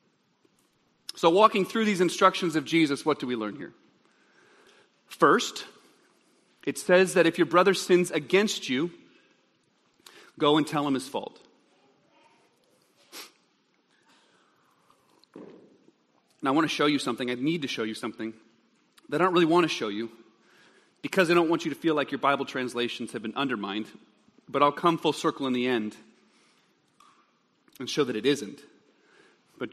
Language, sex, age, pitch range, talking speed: English, male, 40-59, 135-185 Hz, 155 wpm